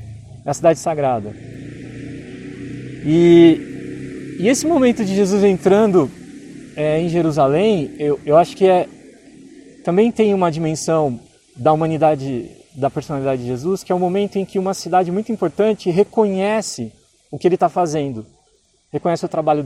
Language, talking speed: Portuguese, 145 wpm